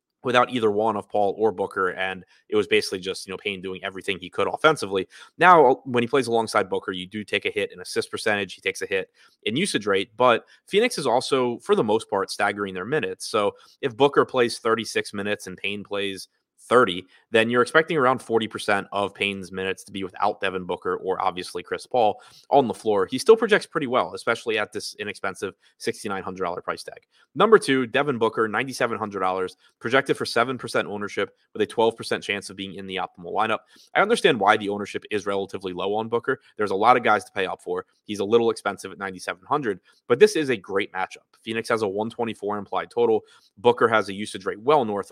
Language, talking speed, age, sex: English, 210 wpm, 20-39, male